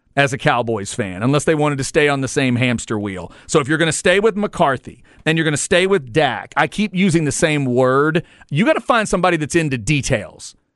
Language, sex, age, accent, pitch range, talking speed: English, male, 40-59, American, 140-195 Hz, 240 wpm